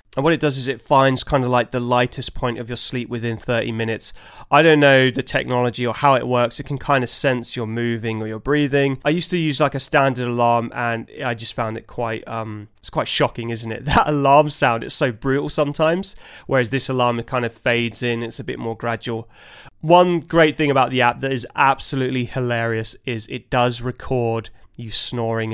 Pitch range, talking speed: 115-140 Hz, 220 wpm